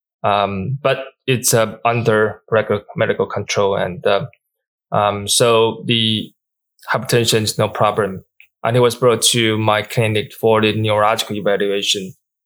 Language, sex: Chinese, male